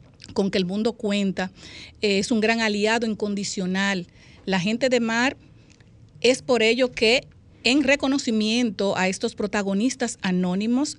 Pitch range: 195-225 Hz